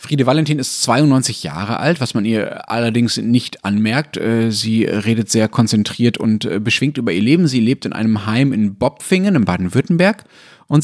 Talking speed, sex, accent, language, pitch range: 170 wpm, male, German, German, 105-130 Hz